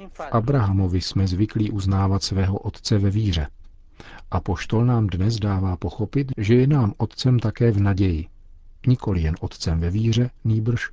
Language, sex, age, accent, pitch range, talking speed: Czech, male, 50-69, native, 90-105 Hz, 155 wpm